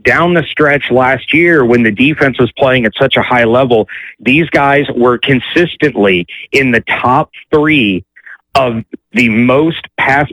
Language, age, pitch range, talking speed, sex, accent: English, 30-49, 115-140 Hz, 155 wpm, male, American